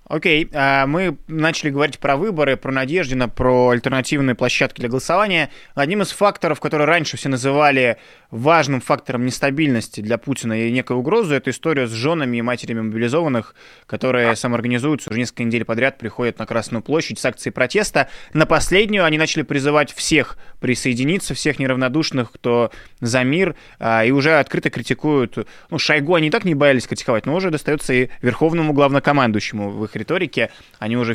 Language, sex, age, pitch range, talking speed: Russian, male, 20-39, 120-155 Hz, 165 wpm